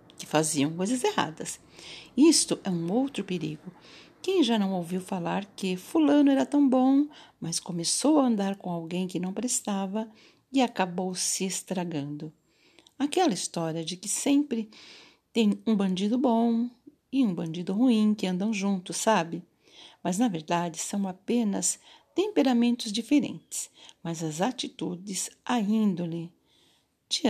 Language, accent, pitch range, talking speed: Portuguese, Brazilian, 185-265 Hz, 135 wpm